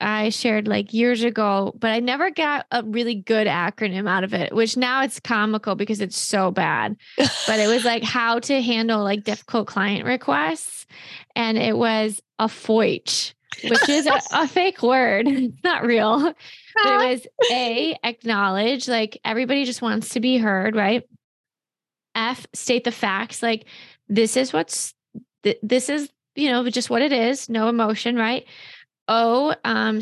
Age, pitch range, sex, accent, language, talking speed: 20-39, 220-260 Hz, female, American, English, 160 wpm